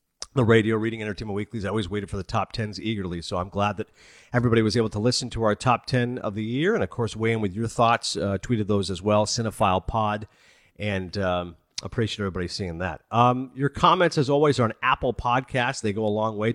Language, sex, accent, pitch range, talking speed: English, male, American, 100-125 Hz, 230 wpm